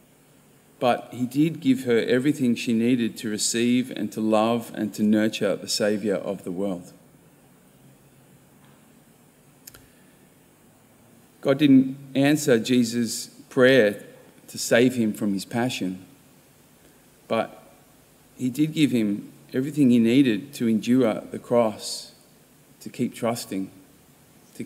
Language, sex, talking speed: English, male, 115 wpm